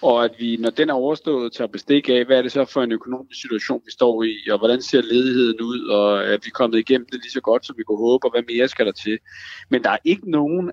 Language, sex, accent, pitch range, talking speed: Danish, male, native, 110-145 Hz, 285 wpm